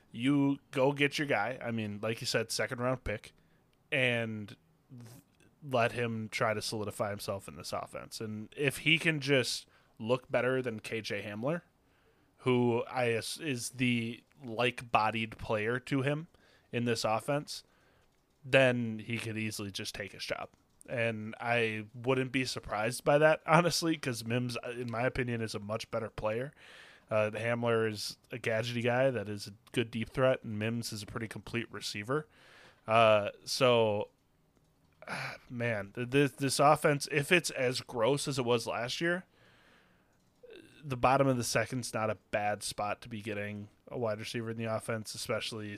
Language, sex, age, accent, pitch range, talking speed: English, male, 20-39, American, 110-130 Hz, 160 wpm